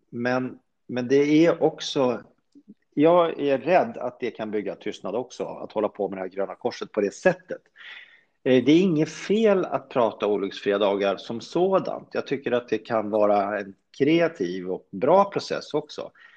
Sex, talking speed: male, 170 wpm